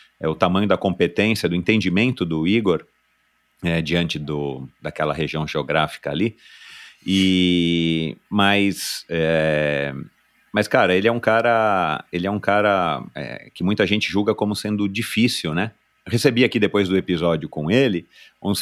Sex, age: male, 40-59